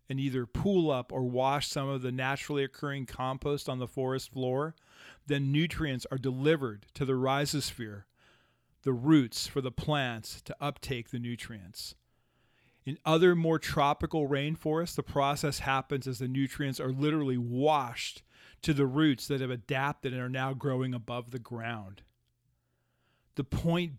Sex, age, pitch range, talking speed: male, 40-59, 120-145 Hz, 155 wpm